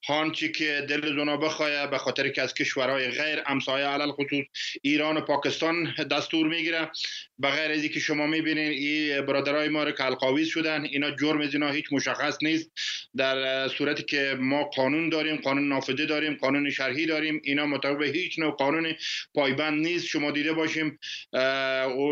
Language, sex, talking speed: Persian, male, 165 wpm